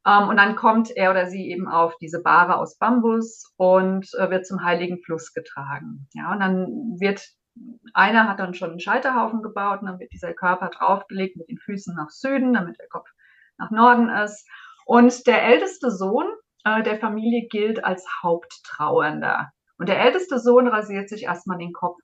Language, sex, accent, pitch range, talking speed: German, female, German, 175-220 Hz, 175 wpm